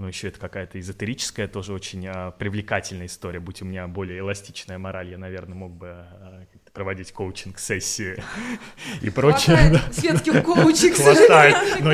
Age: 20-39